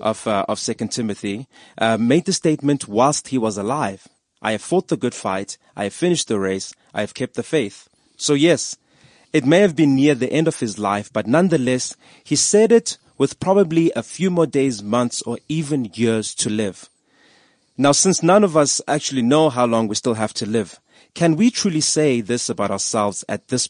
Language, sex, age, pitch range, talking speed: English, male, 30-49, 110-165 Hz, 205 wpm